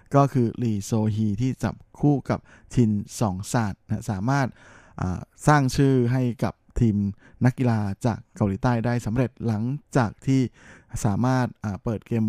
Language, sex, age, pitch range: Thai, male, 20-39, 110-130 Hz